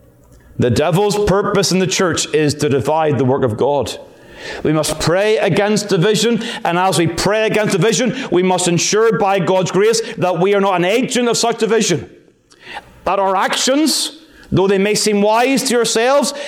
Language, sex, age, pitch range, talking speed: English, male, 40-59, 170-225 Hz, 180 wpm